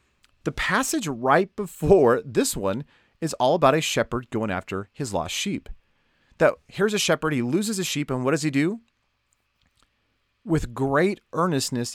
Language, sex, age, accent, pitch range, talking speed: English, male, 30-49, American, 125-170 Hz, 160 wpm